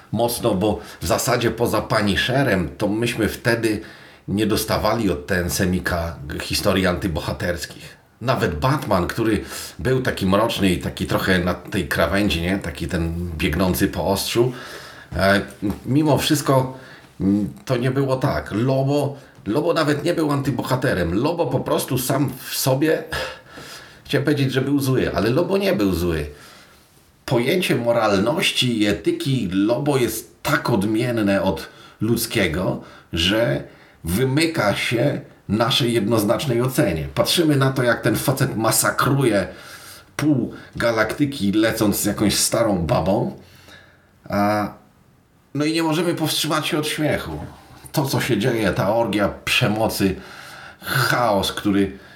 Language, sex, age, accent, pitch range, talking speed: Polish, male, 40-59, native, 100-135 Hz, 130 wpm